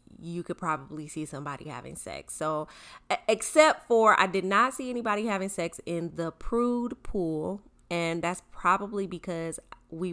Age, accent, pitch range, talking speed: 20-39, American, 150-190 Hz, 155 wpm